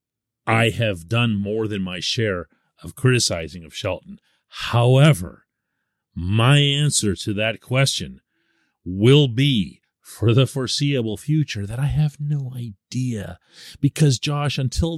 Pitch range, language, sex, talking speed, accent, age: 105-155 Hz, English, male, 125 wpm, American, 40-59